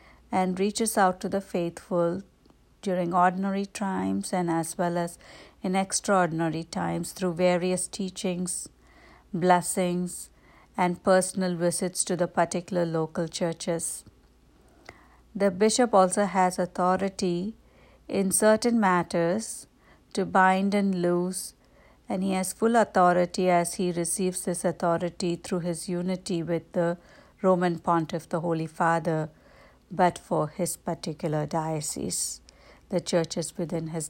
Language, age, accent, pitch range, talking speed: English, 60-79, Indian, 165-185 Hz, 120 wpm